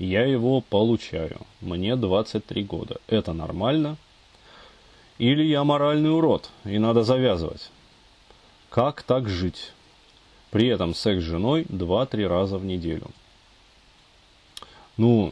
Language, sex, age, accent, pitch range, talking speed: Russian, male, 30-49, native, 95-125 Hz, 110 wpm